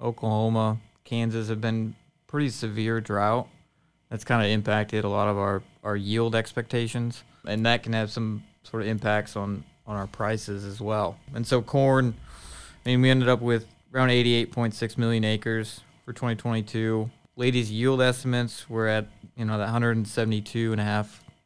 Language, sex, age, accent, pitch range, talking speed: English, male, 20-39, American, 105-120 Hz, 155 wpm